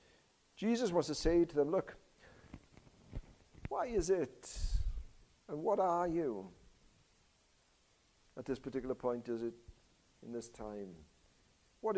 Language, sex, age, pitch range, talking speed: English, male, 60-79, 160-235 Hz, 120 wpm